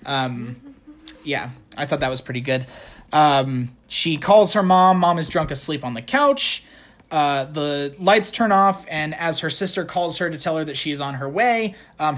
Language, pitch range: English, 150-225 Hz